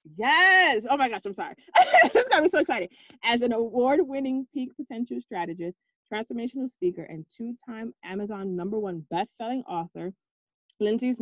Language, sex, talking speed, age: English, female, 160 wpm, 30-49